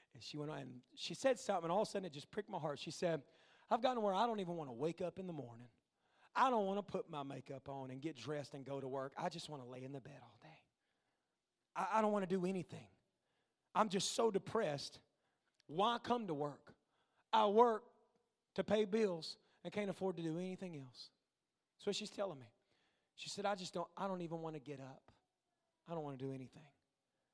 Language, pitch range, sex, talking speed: English, 145-190 Hz, male, 235 wpm